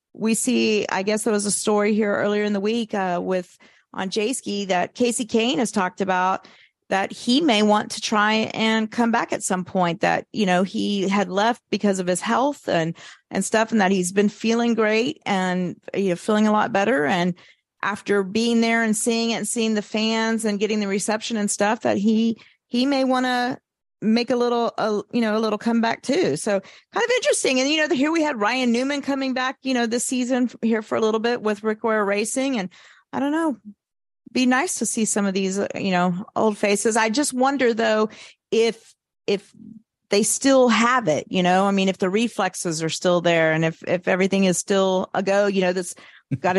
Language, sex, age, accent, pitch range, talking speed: English, female, 40-59, American, 195-235 Hz, 215 wpm